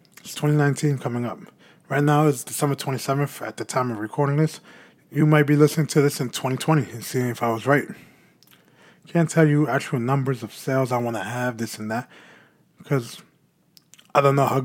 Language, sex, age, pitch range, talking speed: English, male, 20-39, 120-150 Hz, 195 wpm